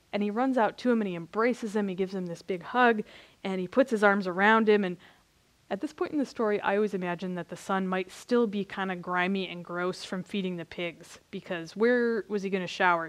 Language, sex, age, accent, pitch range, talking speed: English, female, 20-39, American, 180-225 Hz, 250 wpm